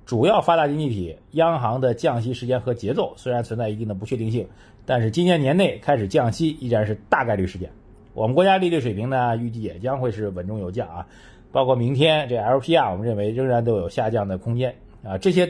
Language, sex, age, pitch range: Chinese, male, 30-49, 105-150 Hz